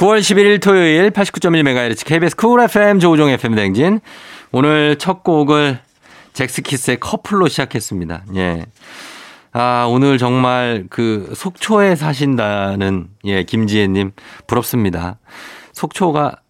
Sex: male